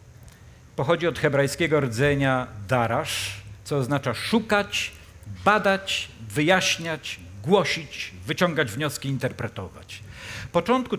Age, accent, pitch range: 50-69, native, 115-145 Hz